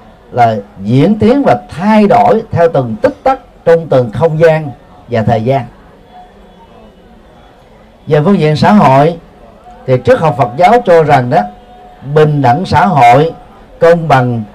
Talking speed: 150 wpm